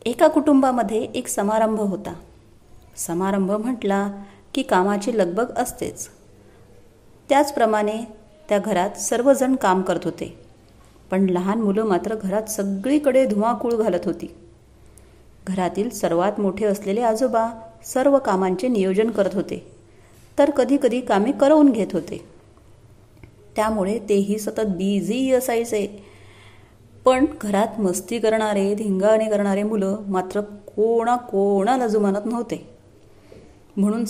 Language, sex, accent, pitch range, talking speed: Marathi, female, native, 180-240 Hz, 105 wpm